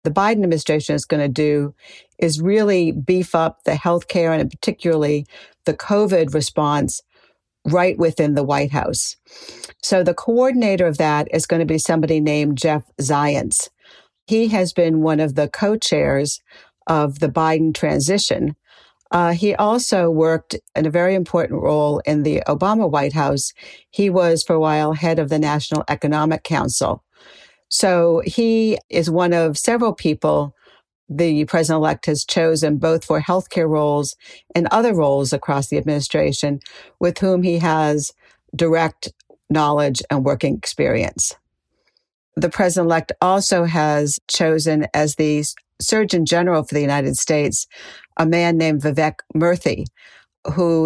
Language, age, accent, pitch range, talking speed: English, 50-69, American, 150-175 Hz, 145 wpm